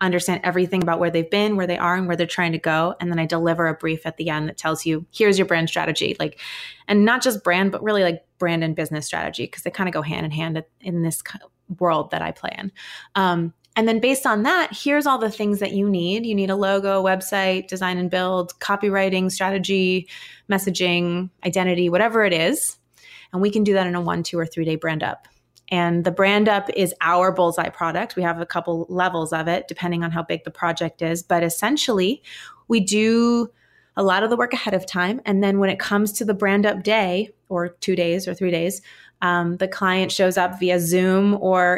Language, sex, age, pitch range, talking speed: English, female, 20-39, 170-200 Hz, 225 wpm